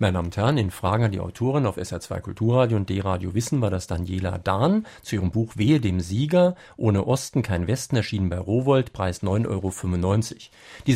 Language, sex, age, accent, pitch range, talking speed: German, male, 50-69, German, 95-130 Hz, 195 wpm